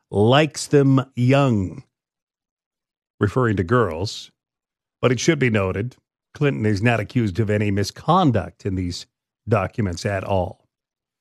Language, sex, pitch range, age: English, male, 105-130 Hz, 40-59